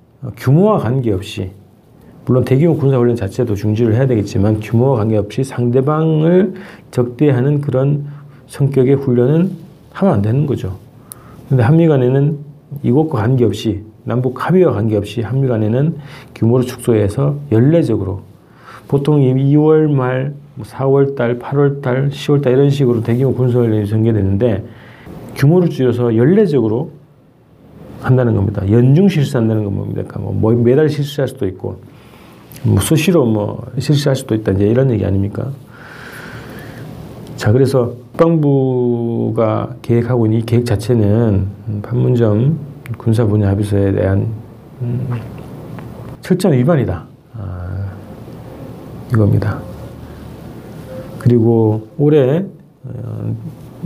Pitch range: 110-140 Hz